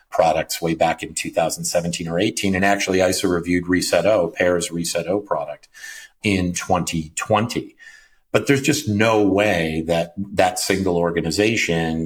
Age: 50-69